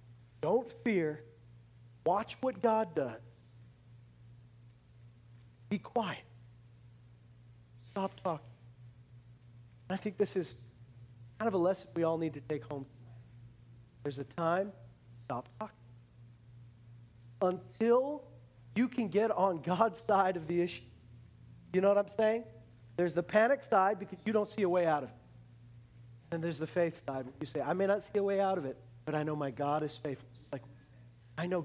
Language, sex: English, male